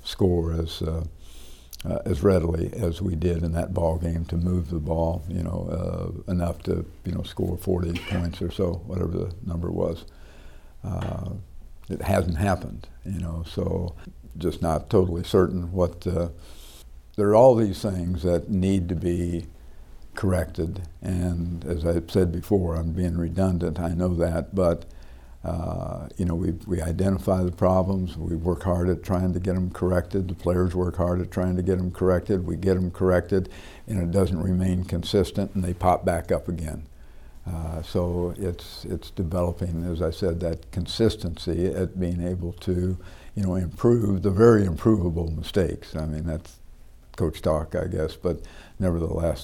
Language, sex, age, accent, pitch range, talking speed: English, male, 60-79, American, 85-95 Hz, 170 wpm